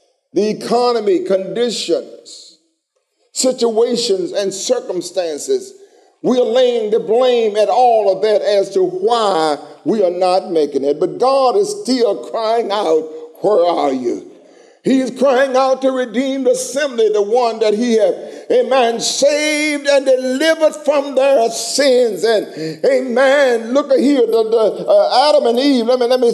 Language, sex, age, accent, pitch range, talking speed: English, male, 50-69, American, 235-360 Hz, 155 wpm